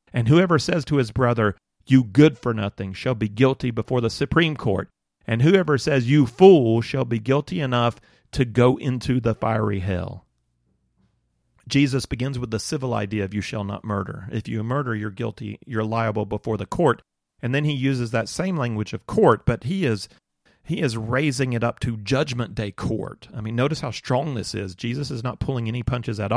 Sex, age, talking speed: male, 40-59, 200 wpm